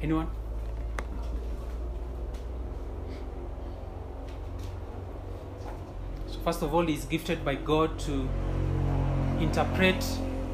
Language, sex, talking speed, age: English, male, 65 wpm, 30-49